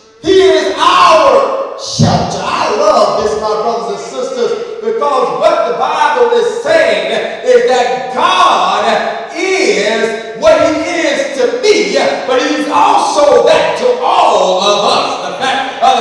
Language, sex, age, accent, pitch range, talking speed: English, male, 40-59, American, 260-350 Hz, 140 wpm